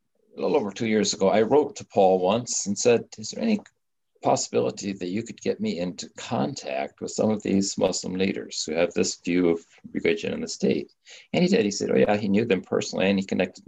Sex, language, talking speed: male, English, 235 wpm